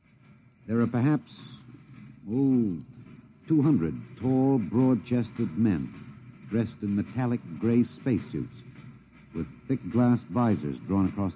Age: 60-79